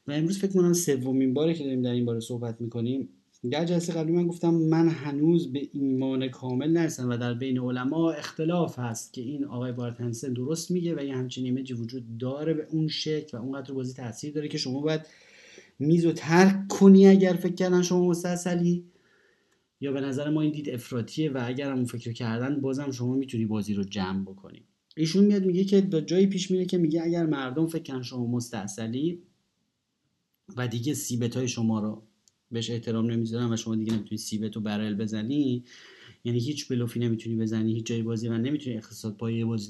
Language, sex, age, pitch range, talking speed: Arabic, male, 30-49, 115-160 Hz, 190 wpm